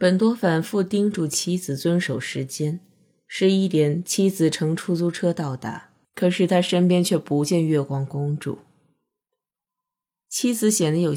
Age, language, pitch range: 20-39, Chinese, 140-190 Hz